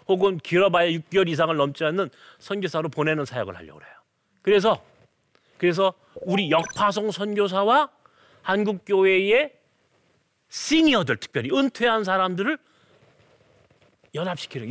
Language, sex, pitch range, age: Korean, male, 190-260 Hz, 40-59